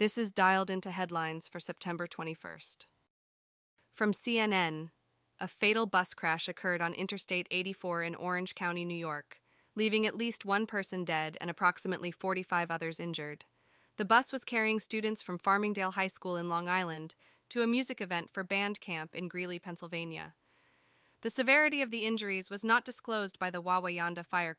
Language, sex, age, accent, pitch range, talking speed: English, female, 20-39, American, 170-225 Hz, 165 wpm